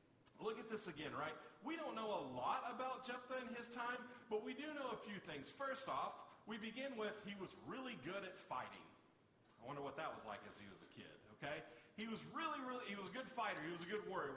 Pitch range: 165-225 Hz